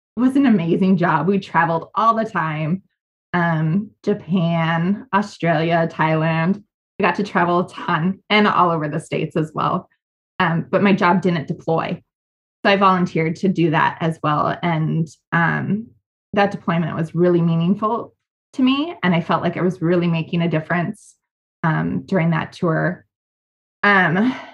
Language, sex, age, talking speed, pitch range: English, female, 20-39, 160 wpm, 165-205 Hz